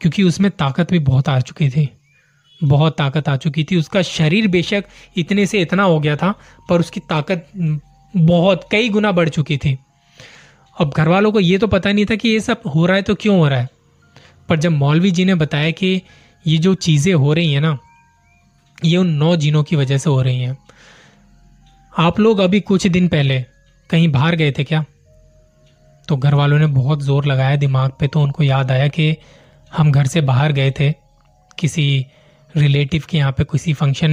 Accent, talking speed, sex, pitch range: native, 195 wpm, male, 140-170 Hz